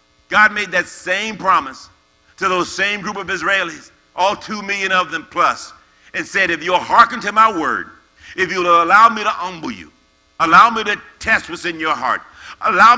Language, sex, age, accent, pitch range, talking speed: English, male, 50-69, American, 160-205 Hz, 190 wpm